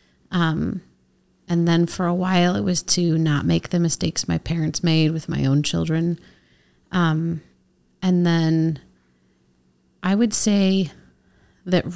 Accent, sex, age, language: American, female, 30-49, English